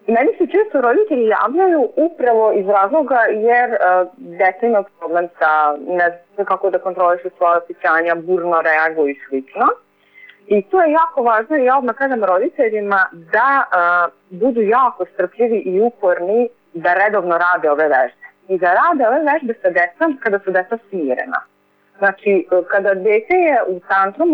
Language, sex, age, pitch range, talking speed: Croatian, female, 30-49, 180-250 Hz, 160 wpm